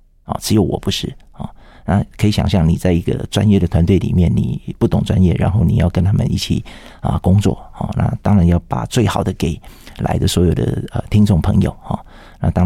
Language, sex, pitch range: Chinese, male, 95-125 Hz